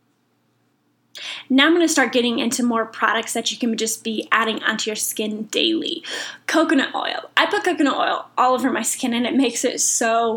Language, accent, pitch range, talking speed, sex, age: English, American, 230-280 Hz, 195 wpm, female, 10-29